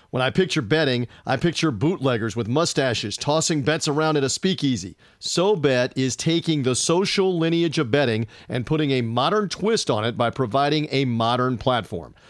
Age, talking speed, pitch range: 40-59, 170 wpm, 125-170 Hz